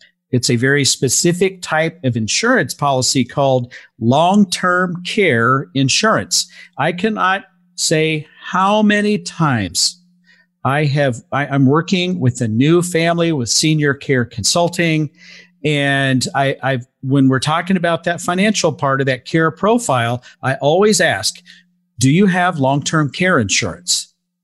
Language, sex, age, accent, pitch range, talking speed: English, male, 50-69, American, 130-180 Hz, 135 wpm